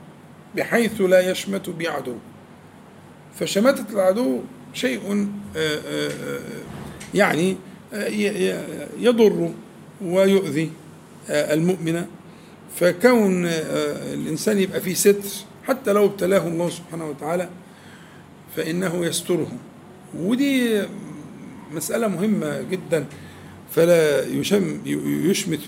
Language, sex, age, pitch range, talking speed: Arabic, male, 50-69, 155-200 Hz, 70 wpm